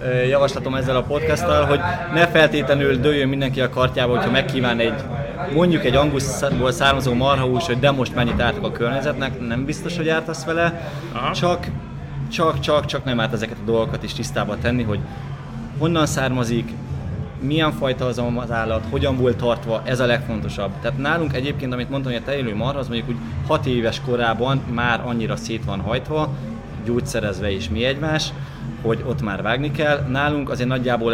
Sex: male